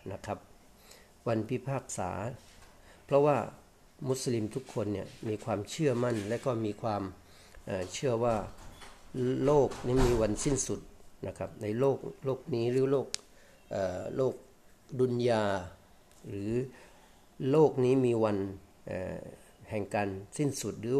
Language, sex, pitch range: Thai, male, 100-130 Hz